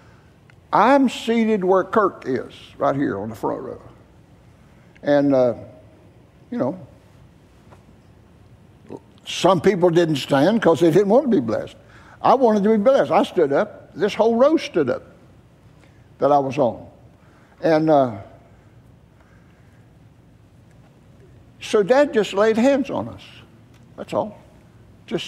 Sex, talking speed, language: male, 130 wpm, English